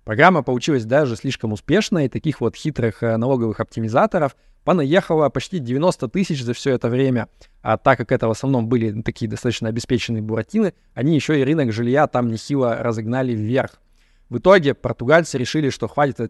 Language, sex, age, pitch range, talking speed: Russian, male, 20-39, 115-145 Hz, 165 wpm